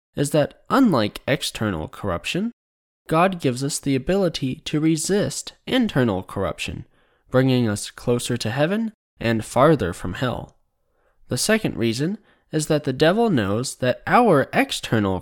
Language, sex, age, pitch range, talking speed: English, male, 10-29, 115-170 Hz, 135 wpm